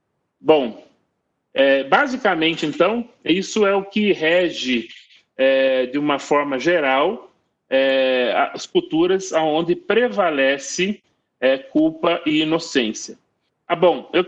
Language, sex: Portuguese, male